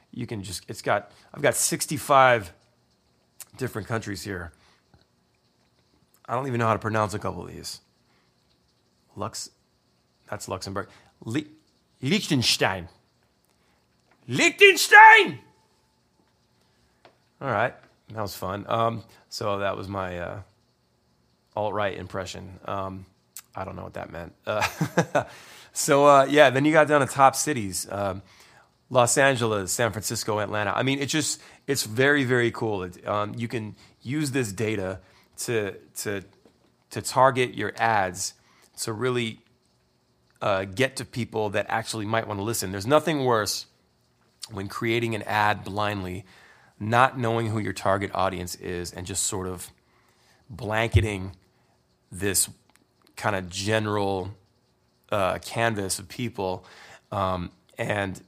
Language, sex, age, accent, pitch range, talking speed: English, male, 30-49, American, 95-120 Hz, 130 wpm